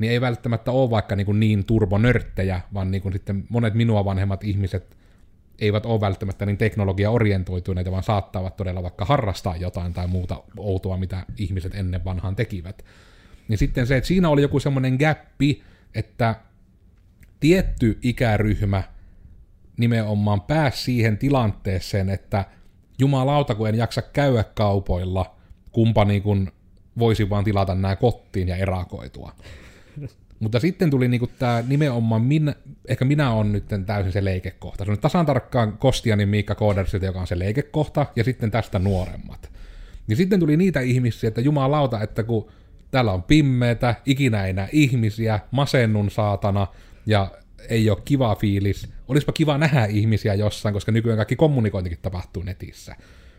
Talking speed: 145 wpm